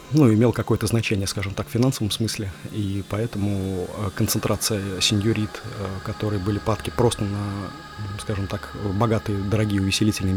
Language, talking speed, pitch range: Russian, 135 wpm, 95-105 Hz